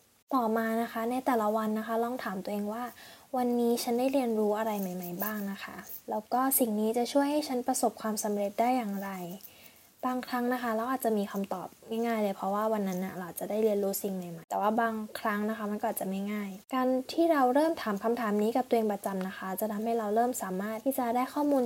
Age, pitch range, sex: 10-29, 200-245 Hz, female